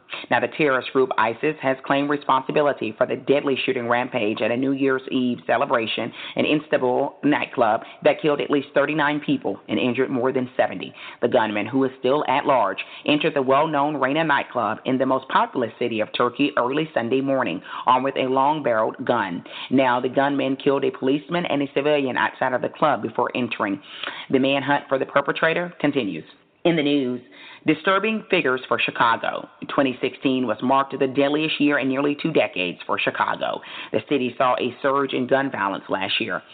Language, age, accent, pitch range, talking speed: English, 30-49, American, 125-145 Hz, 180 wpm